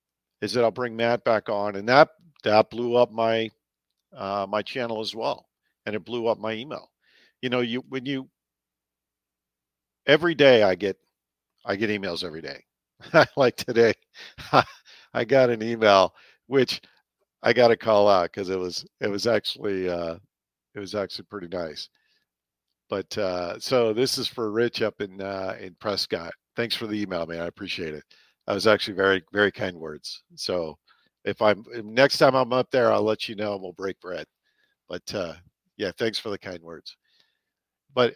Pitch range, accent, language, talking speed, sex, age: 95-125 Hz, American, English, 180 wpm, male, 50-69